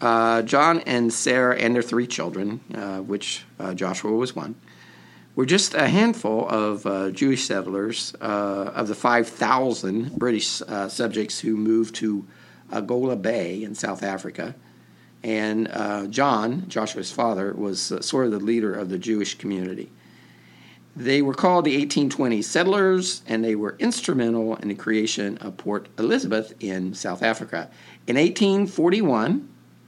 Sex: male